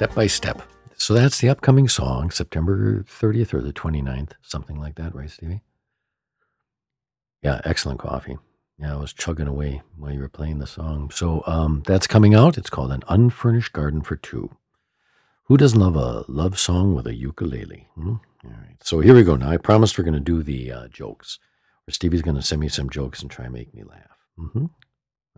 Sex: male